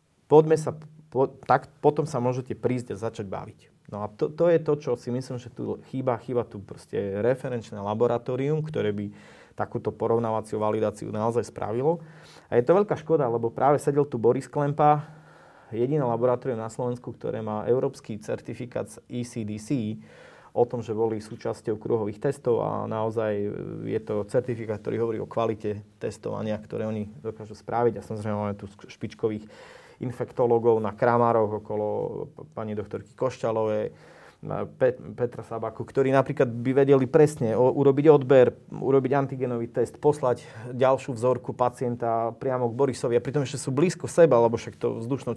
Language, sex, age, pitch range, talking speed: Slovak, male, 30-49, 110-135 Hz, 155 wpm